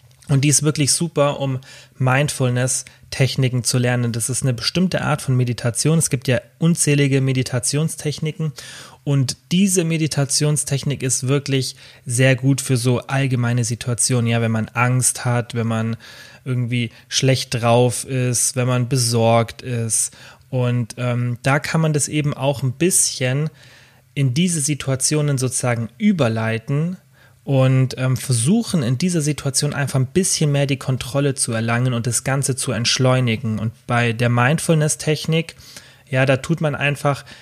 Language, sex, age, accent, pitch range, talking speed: German, male, 30-49, German, 125-145 Hz, 145 wpm